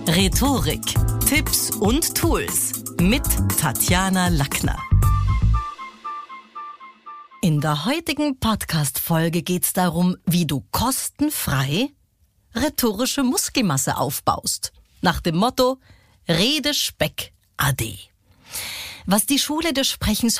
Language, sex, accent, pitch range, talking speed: German, female, German, 145-220 Hz, 90 wpm